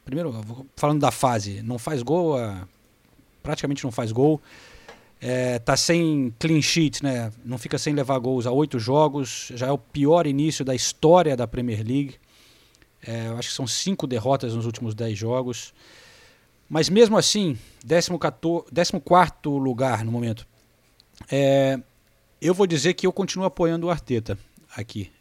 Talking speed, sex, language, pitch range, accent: 150 wpm, male, Portuguese, 115-150 Hz, Brazilian